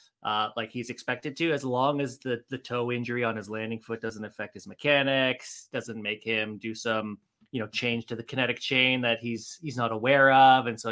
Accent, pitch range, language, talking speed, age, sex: American, 110-135 Hz, English, 220 wpm, 30-49, male